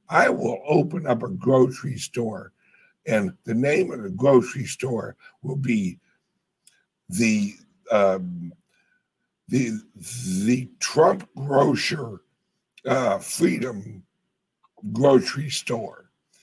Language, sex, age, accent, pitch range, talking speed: English, male, 60-79, American, 120-200 Hz, 95 wpm